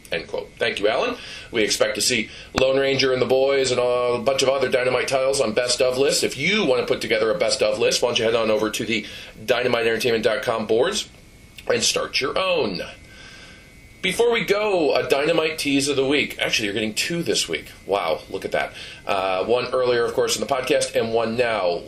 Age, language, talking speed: 40-59, English, 215 wpm